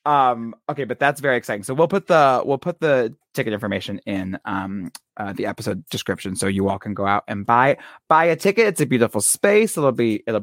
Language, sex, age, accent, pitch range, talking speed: English, male, 20-39, American, 105-150 Hz, 225 wpm